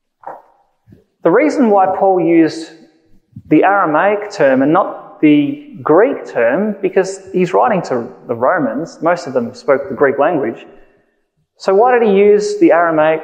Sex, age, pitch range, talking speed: male, 20-39, 155-255 Hz, 150 wpm